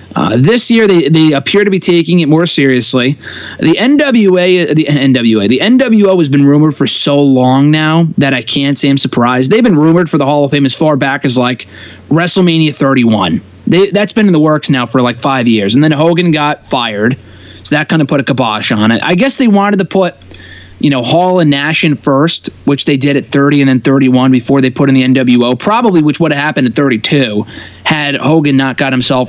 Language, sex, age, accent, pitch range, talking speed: English, male, 20-39, American, 130-165 Hz, 225 wpm